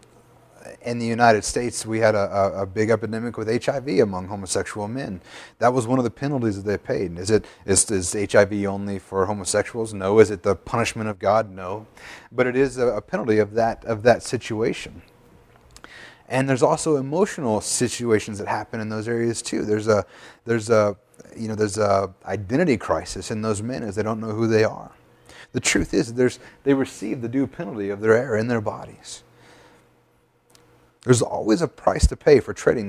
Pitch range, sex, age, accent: 100-120 Hz, male, 30-49, American